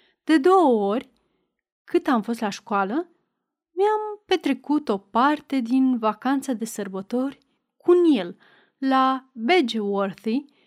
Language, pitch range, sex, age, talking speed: Romanian, 225-290 Hz, female, 30-49, 110 wpm